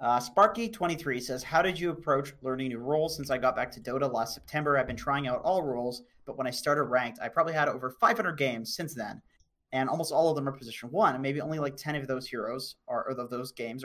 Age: 30-49